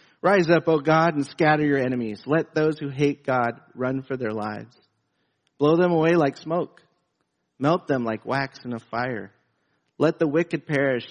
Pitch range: 125-165 Hz